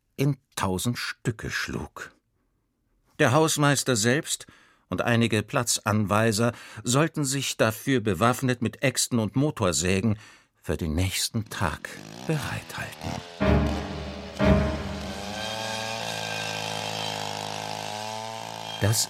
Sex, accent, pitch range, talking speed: male, German, 95-125 Hz, 75 wpm